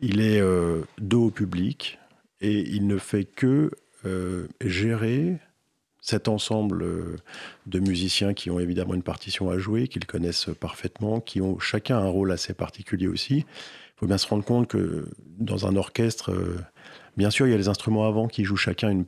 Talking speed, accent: 190 wpm, French